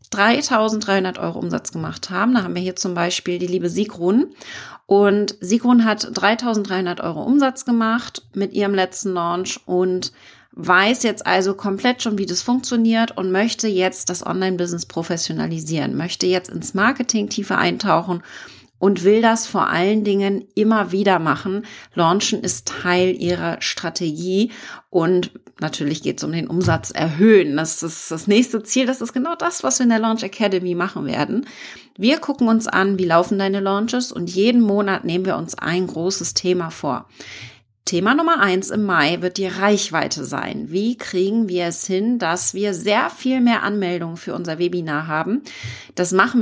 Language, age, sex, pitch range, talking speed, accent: German, 30-49, female, 175-220 Hz, 165 wpm, German